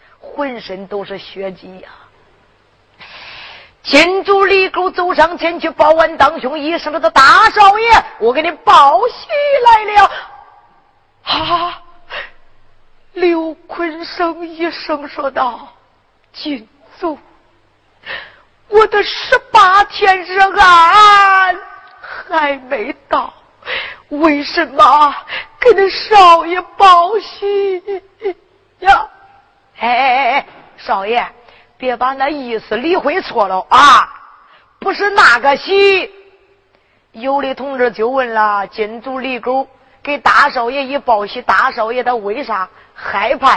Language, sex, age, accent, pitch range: Chinese, female, 40-59, native, 245-385 Hz